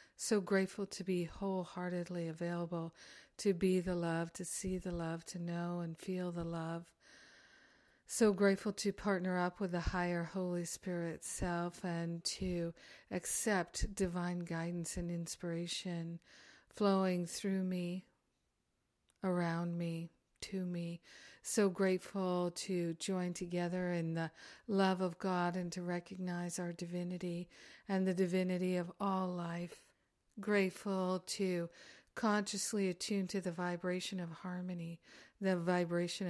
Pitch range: 170-190 Hz